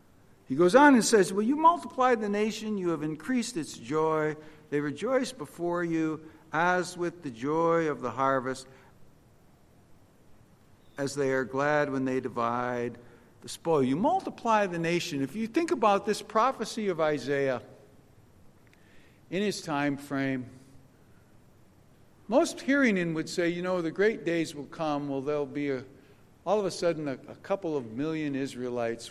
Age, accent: 60-79, American